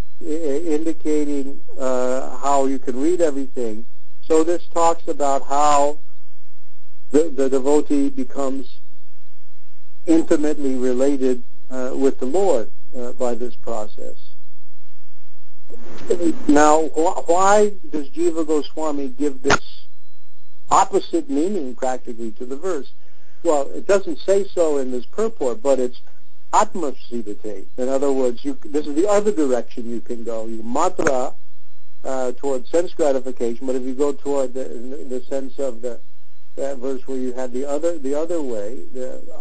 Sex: male